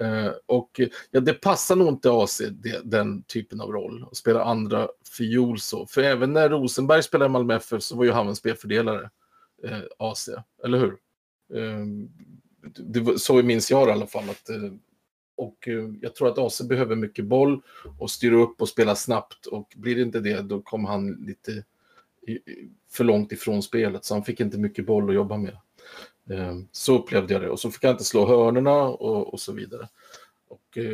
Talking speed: 190 wpm